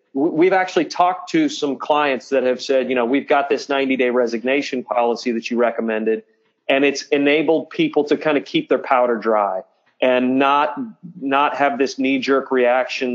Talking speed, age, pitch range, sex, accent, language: 175 wpm, 30-49, 125-150 Hz, male, American, English